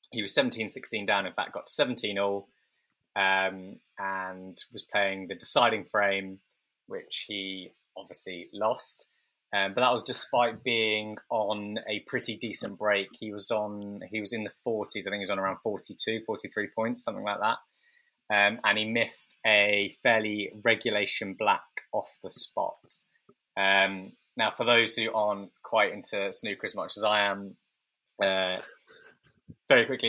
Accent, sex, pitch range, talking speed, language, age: British, male, 100-110 Hz, 160 wpm, English, 20-39